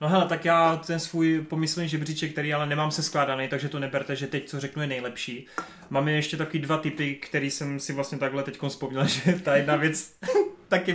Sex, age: male, 30-49